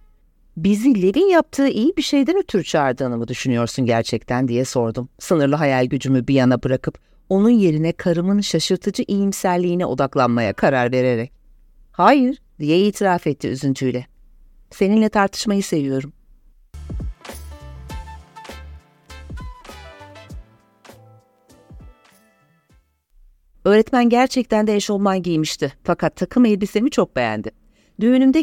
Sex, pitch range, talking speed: female, 130-210 Hz, 100 wpm